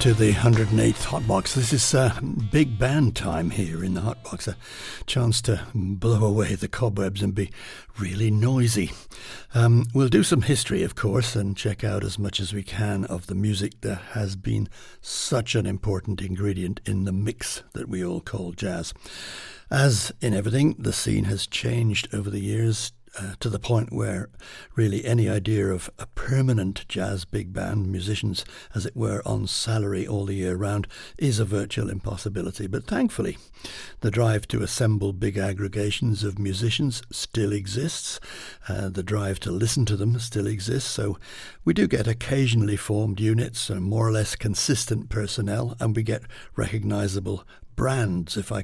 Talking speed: 170 wpm